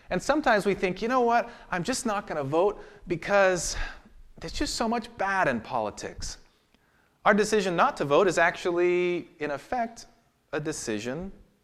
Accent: American